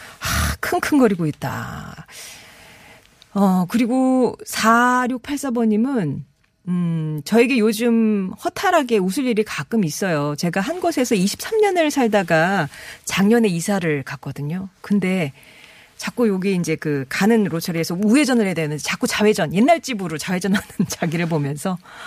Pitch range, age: 170-245 Hz, 40-59